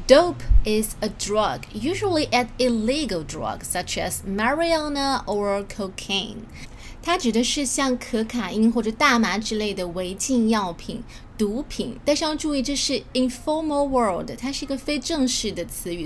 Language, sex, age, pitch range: Chinese, female, 20-39, 200-255 Hz